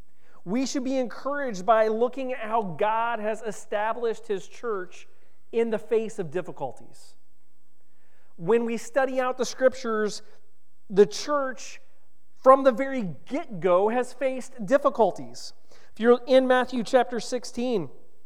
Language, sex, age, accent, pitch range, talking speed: English, male, 40-59, American, 170-250 Hz, 130 wpm